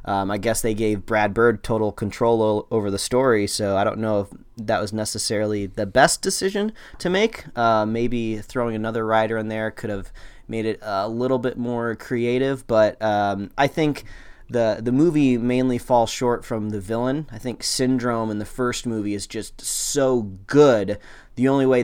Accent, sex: American, male